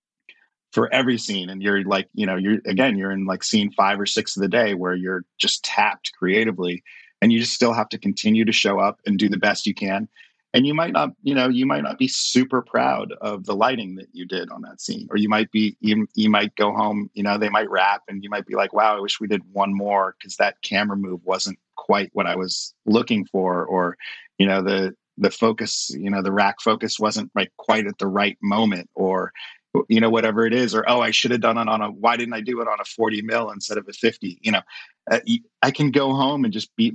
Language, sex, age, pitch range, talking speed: English, male, 30-49, 100-120 Hz, 250 wpm